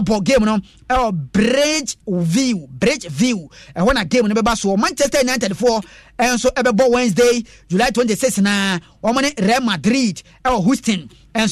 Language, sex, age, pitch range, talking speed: English, male, 30-49, 195-245 Hz, 155 wpm